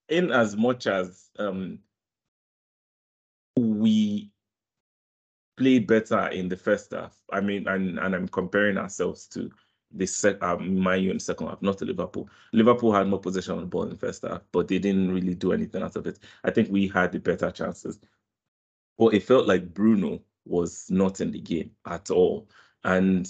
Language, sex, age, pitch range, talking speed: English, male, 20-39, 90-105 Hz, 180 wpm